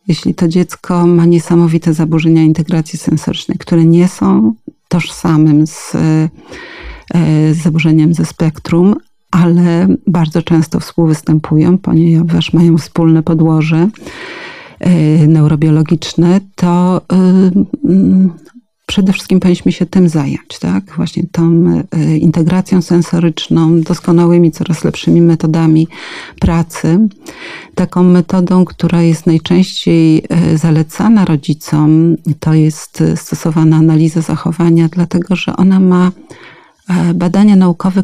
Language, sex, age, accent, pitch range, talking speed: Polish, female, 40-59, native, 165-185 Hz, 95 wpm